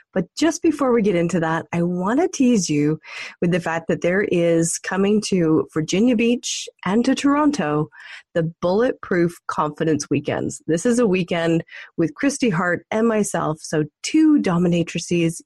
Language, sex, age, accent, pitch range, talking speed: English, female, 30-49, American, 165-220 Hz, 160 wpm